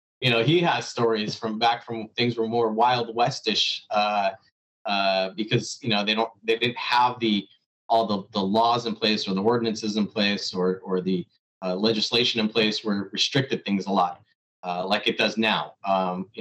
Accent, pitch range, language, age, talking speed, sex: American, 105-130 Hz, English, 30-49, 200 wpm, male